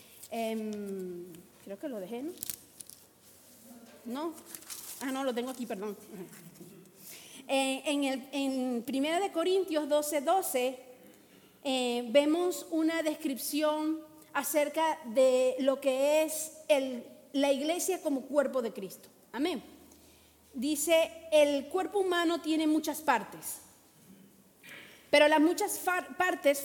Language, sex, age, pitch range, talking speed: Spanish, female, 40-59, 255-325 Hz, 105 wpm